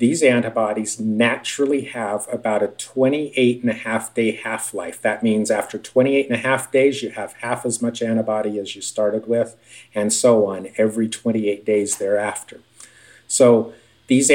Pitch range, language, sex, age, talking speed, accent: 110-125 Hz, English, male, 50-69, 140 wpm, American